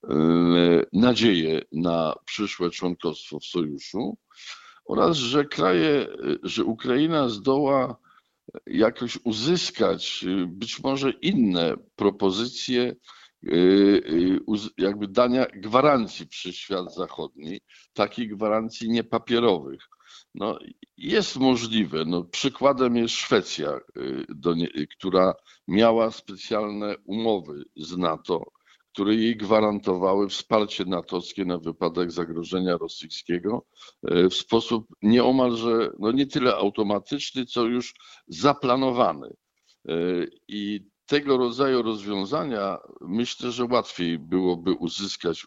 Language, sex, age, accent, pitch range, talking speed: Polish, male, 50-69, native, 90-120 Hz, 90 wpm